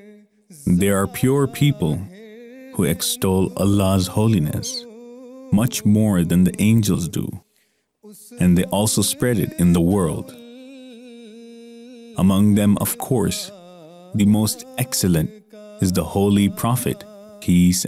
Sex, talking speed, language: male, 115 wpm, English